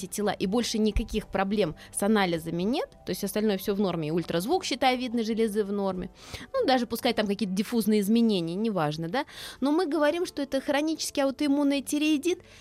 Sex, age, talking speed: female, 20-39, 175 wpm